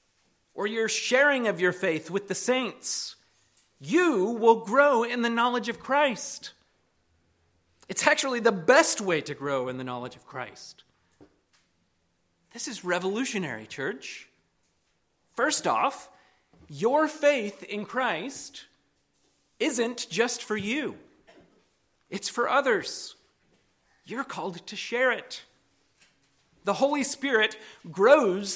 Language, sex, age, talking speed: English, male, 40-59, 115 wpm